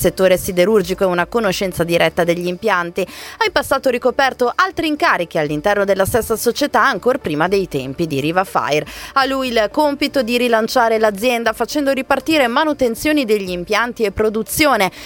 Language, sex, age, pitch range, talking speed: Italian, female, 20-39, 190-265 Hz, 155 wpm